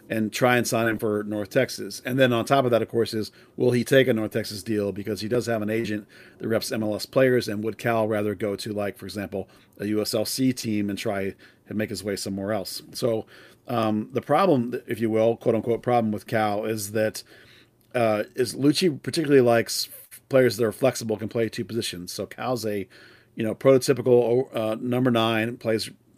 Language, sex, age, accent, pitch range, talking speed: English, male, 40-59, American, 110-125 Hz, 205 wpm